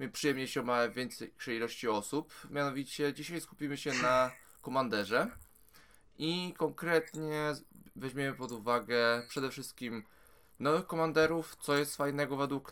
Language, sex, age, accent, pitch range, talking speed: Polish, male, 20-39, native, 120-145 Hz, 125 wpm